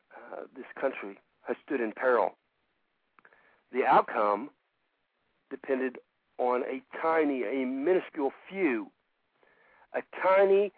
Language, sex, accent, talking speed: English, male, American, 100 wpm